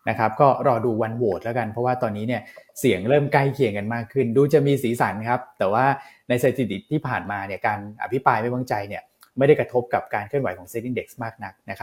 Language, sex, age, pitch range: Thai, male, 20-39, 110-130 Hz